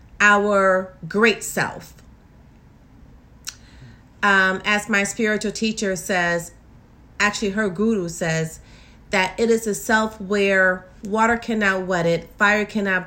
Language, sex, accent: English, female, American